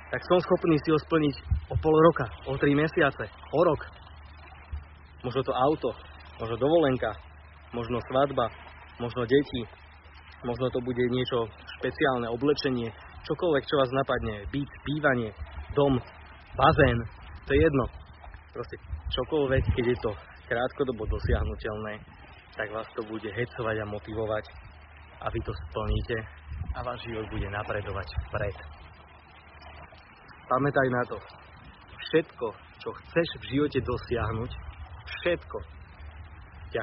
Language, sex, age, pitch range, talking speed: Slovak, male, 20-39, 80-125 Hz, 120 wpm